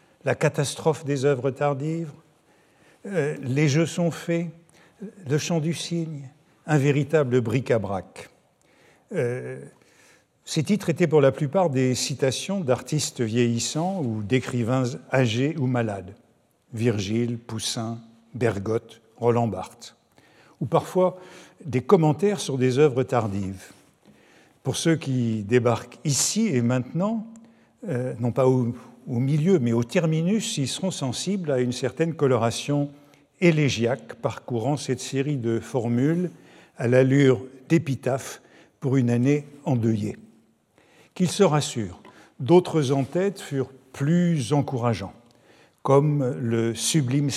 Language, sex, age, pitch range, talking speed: French, male, 50-69, 125-160 Hz, 120 wpm